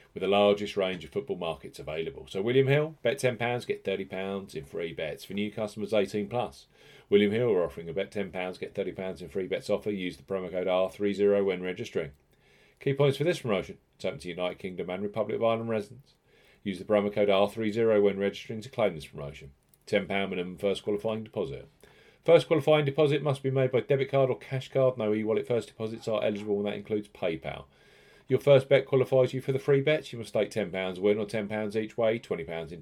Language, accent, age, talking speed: English, British, 40-59, 210 wpm